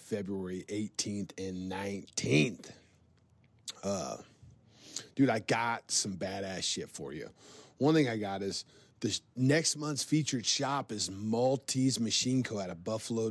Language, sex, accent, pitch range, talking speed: English, male, American, 110-130 Hz, 135 wpm